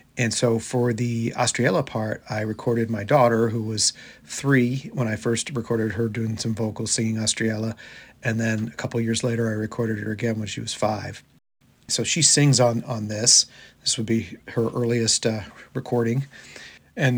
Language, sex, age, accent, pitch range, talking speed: English, male, 40-59, American, 110-120 Hz, 180 wpm